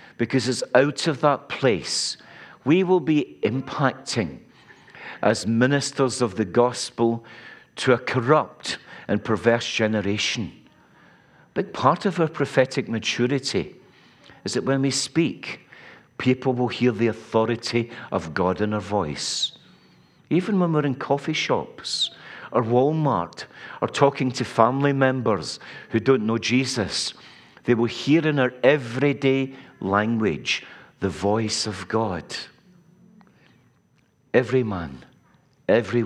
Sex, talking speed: male, 120 wpm